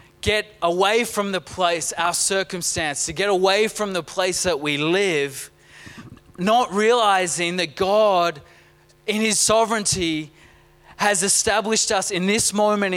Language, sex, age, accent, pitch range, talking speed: English, male, 20-39, Australian, 150-190 Hz, 135 wpm